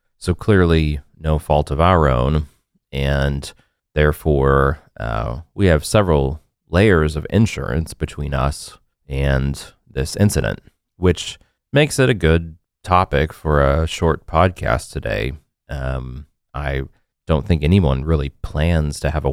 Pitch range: 70-90 Hz